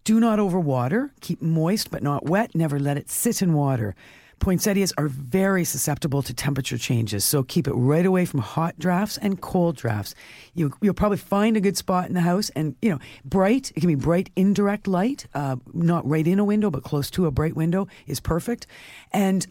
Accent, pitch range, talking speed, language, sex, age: American, 150-210 Hz, 205 wpm, English, female, 50-69